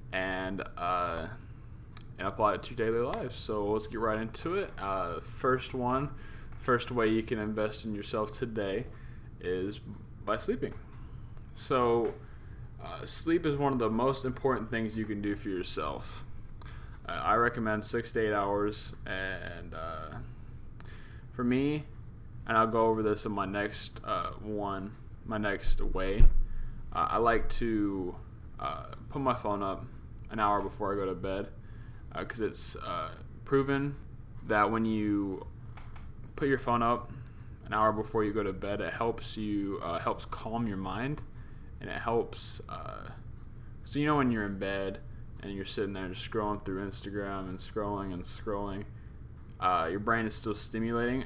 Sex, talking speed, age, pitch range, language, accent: male, 165 wpm, 20-39, 100-120 Hz, English, American